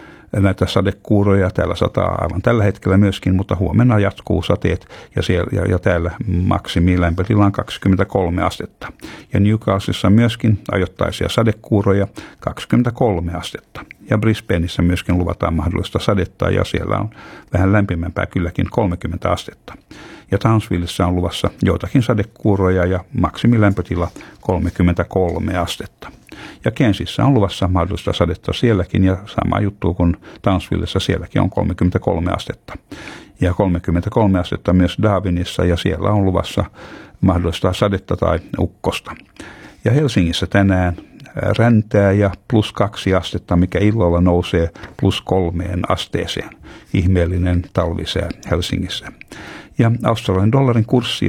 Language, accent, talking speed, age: Finnish, native, 120 wpm, 60-79